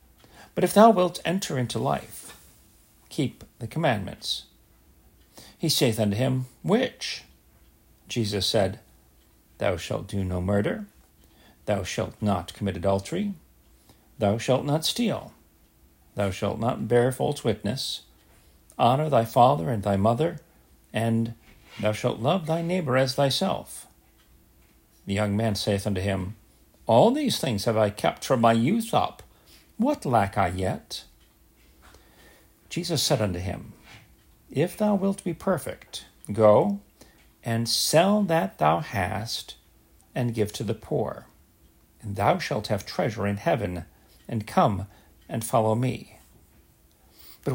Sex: male